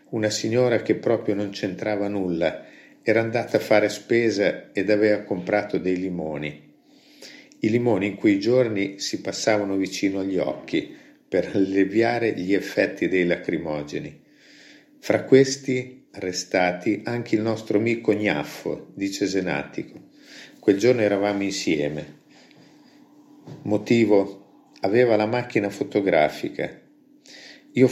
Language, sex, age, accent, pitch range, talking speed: Italian, male, 50-69, native, 100-120 Hz, 115 wpm